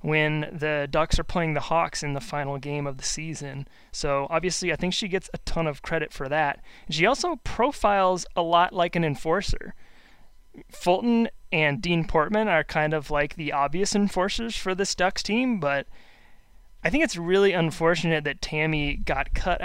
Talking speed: 180 wpm